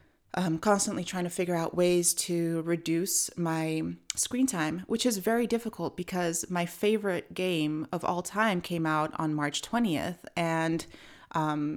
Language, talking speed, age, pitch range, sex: English, 155 wpm, 30-49, 160-190 Hz, female